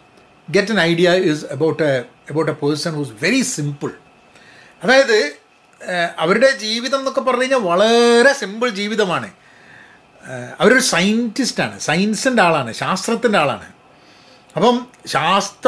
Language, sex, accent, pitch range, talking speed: Malayalam, male, native, 165-220 Hz, 135 wpm